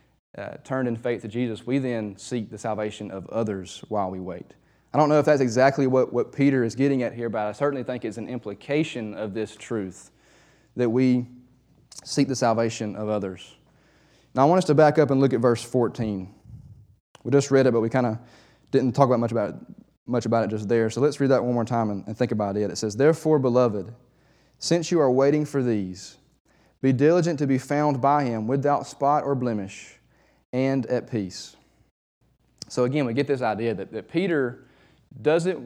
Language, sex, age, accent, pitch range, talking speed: English, male, 20-39, American, 115-140 Hz, 205 wpm